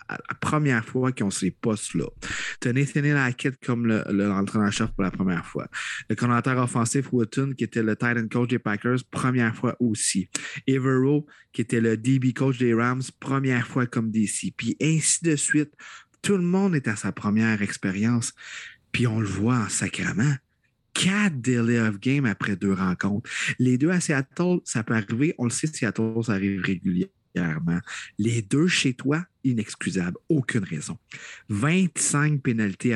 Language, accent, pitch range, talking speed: French, Canadian, 110-140 Hz, 175 wpm